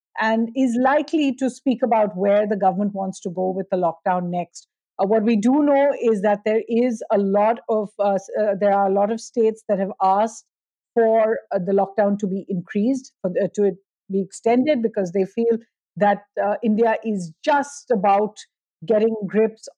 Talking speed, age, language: 190 wpm, 50-69, English